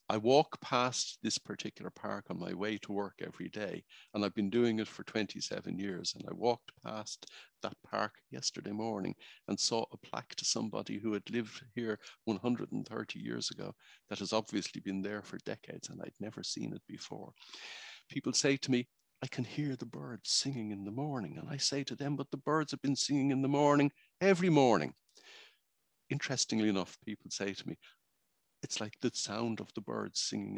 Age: 50-69